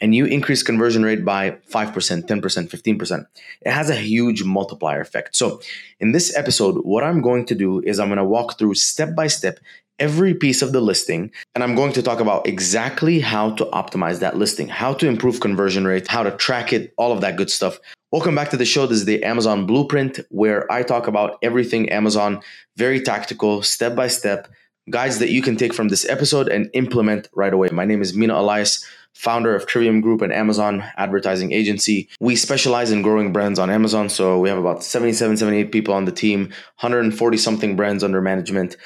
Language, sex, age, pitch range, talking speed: English, male, 20-39, 100-120 Hz, 200 wpm